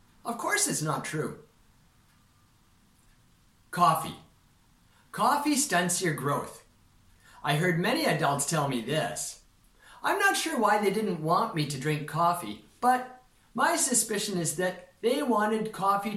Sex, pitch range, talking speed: male, 145-215 Hz, 135 wpm